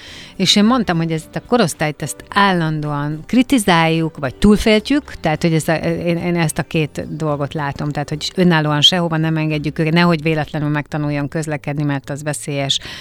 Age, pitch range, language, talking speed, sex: 30-49, 150-180 Hz, Hungarian, 165 wpm, female